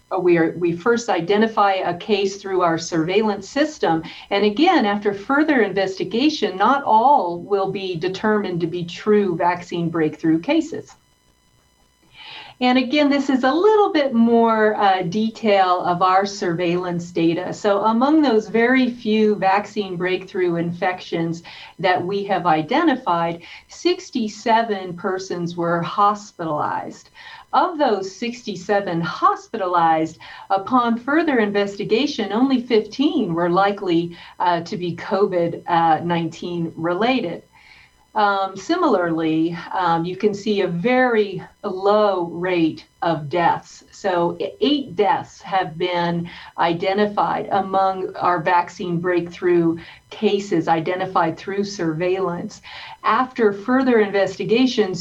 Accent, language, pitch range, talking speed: American, English, 175-220 Hz, 110 wpm